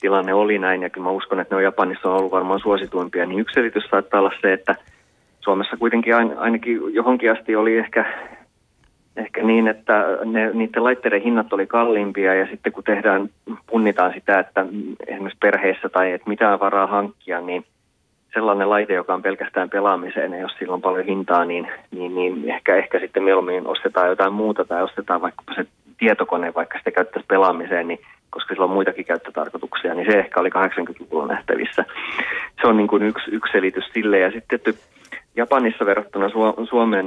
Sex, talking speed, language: male, 175 wpm, Finnish